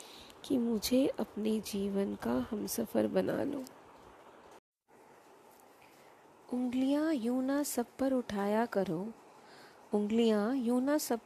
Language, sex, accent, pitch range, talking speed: Hindi, female, native, 205-275 Hz, 100 wpm